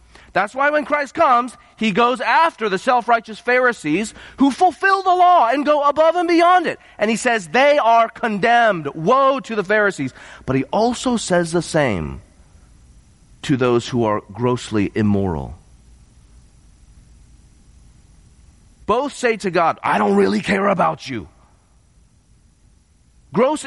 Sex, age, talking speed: male, 30-49, 135 wpm